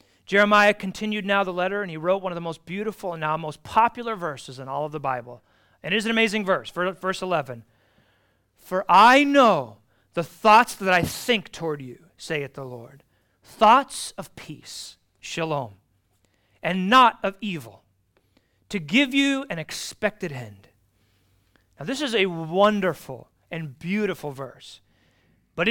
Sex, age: male, 40-59